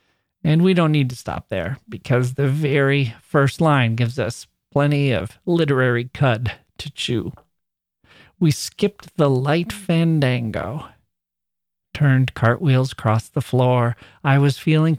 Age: 40-59